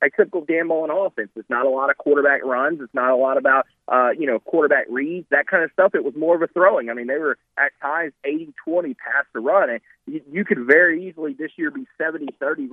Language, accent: English, American